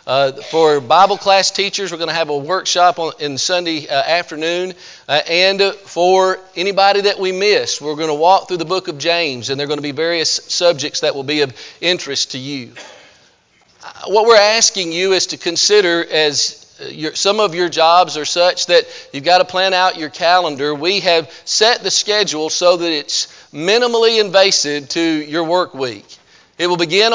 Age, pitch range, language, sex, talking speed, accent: 40-59, 160-195 Hz, English, male, 190 wpm, American